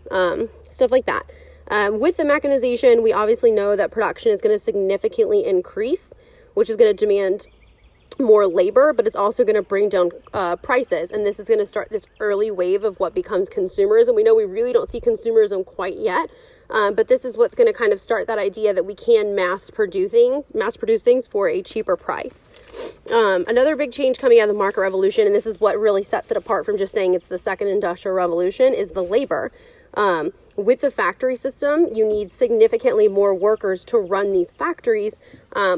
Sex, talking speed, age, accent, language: female, 210 wpm, 20-39, American, English